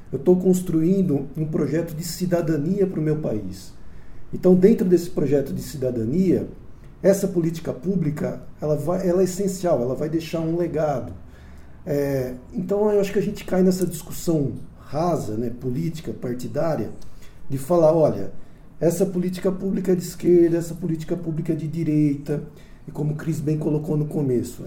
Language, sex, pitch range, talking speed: Portuguese, male, 135-180 Hz, 160 wpm